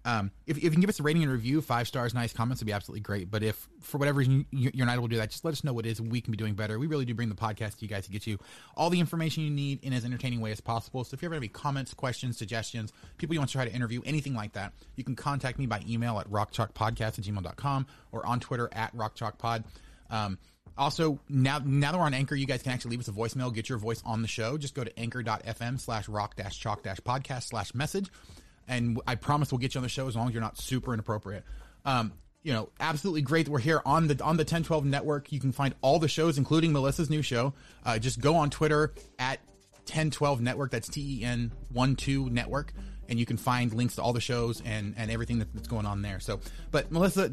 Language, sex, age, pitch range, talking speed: English, male, 30-49, 115-150 Hz, 250 wpm